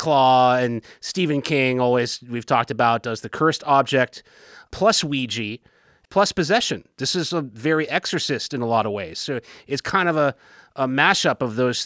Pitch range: 125-155 Hz